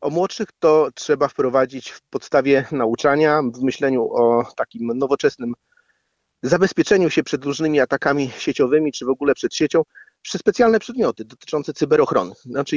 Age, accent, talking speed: 40-59, native, 140 wpm